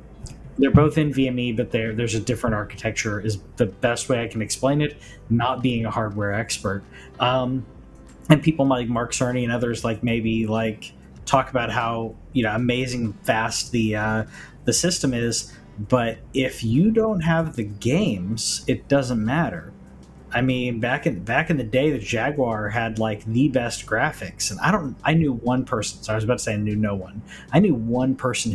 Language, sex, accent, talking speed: English, male, American, 190 wpm